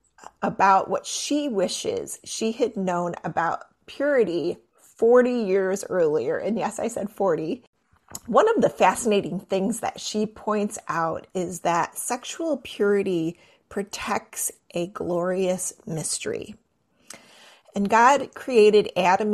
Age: 30-49